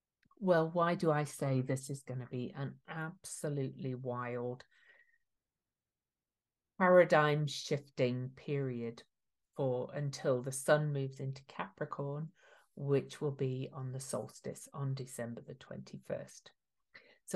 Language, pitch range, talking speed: English, 135-175 Hz, 115 wpm